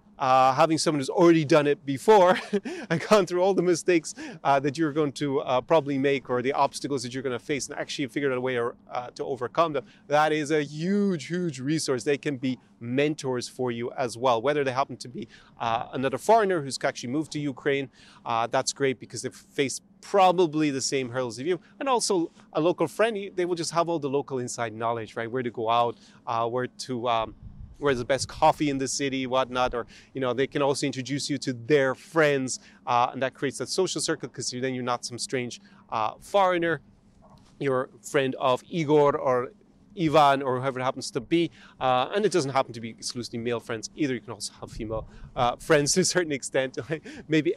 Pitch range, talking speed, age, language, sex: 125-160 Hz, 220 wpm, 30-49, English, male